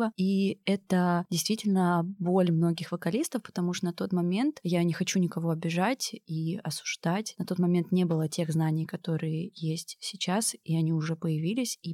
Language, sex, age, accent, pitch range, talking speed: Russian, female, 20-39, native, 170-195 Hz, 165 wpm